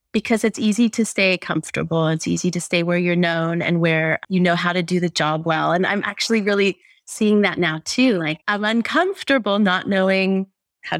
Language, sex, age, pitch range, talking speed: English, female, 30-49, 170-210 Hz, 200 wpm